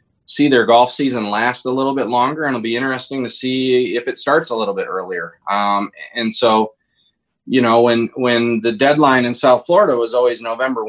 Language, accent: English, American